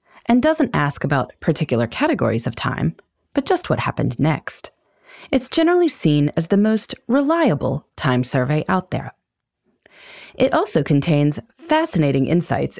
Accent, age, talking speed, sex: American, 30-49, 135 wpm, female